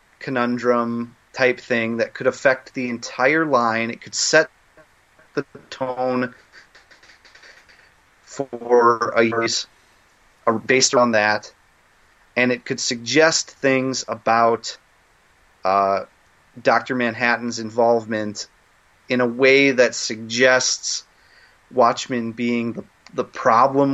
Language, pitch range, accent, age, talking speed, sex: English, 120-155 Hz, American, 30-49, 100 wpm, male